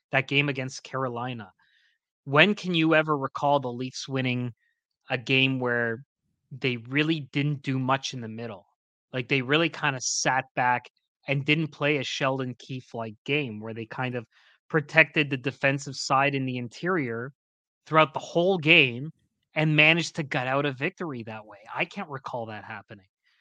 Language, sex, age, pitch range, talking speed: English, male, 20-39, 125-150 Hz, 170 wpm